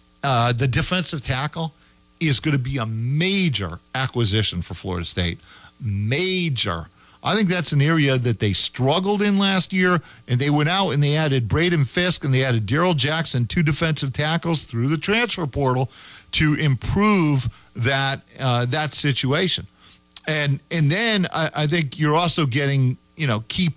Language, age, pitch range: English, 40-59, 115-165 Hz